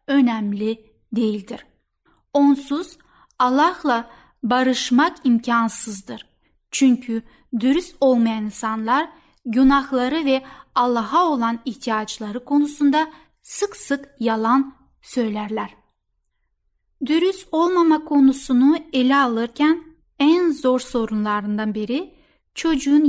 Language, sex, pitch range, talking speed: Turkish, female, 230-295 Hz, 80 wpm